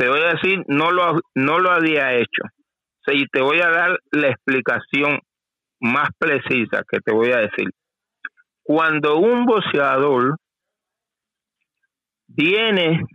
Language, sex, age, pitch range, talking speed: Spanish, male, 50-69, 150-215 Hz, 125 wpm